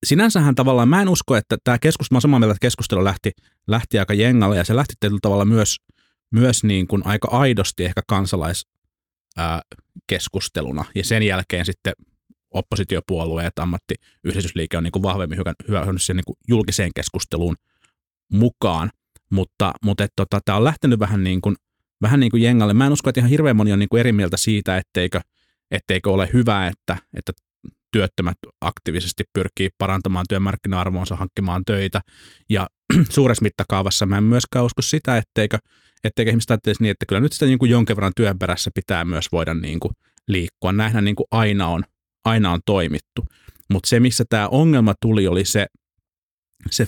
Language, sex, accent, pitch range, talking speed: Finnish, male, native, 90-115 Hz, 160 wpm